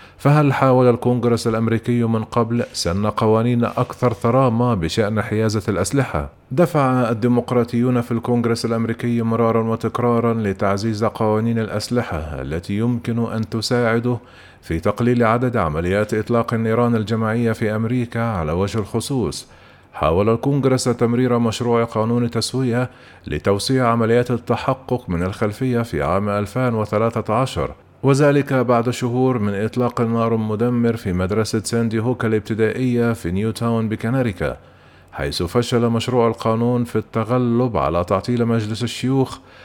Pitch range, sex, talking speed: 110-125 Hz, male, 120 wpm